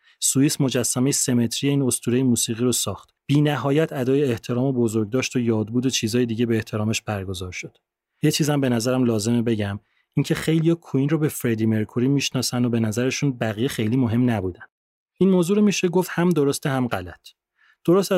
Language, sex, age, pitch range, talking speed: Persian, male, 30-49, 115-145 Hz, 180 wpm